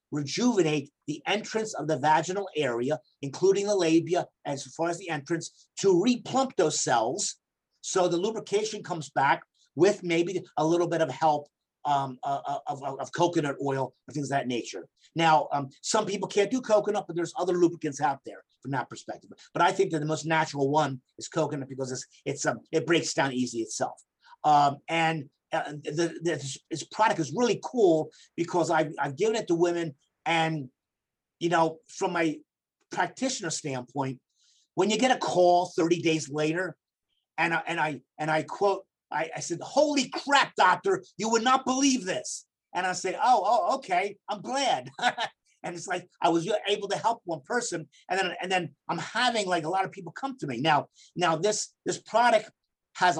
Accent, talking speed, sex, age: American, 190 wpm, male, 50-69